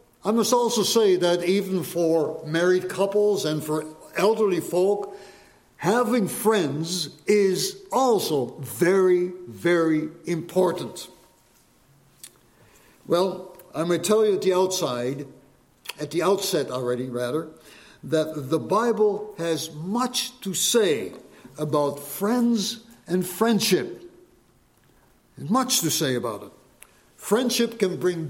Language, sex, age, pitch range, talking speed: English, male, 60-79, 160-210 Hz, 110 wpm